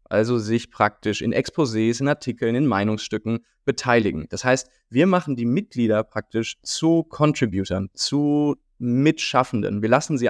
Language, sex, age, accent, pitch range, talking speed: German, male, 20-39, German, 110-135 Hz, 140 wpm